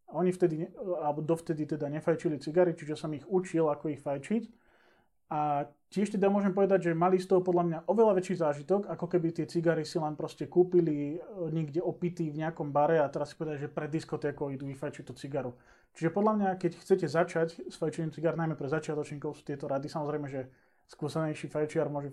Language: Slovak